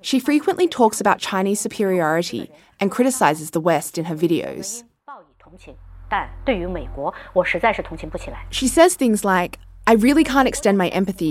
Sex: female